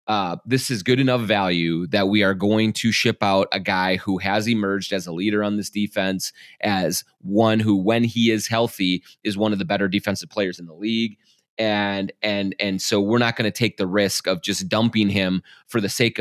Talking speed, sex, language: 220 wpm, male, English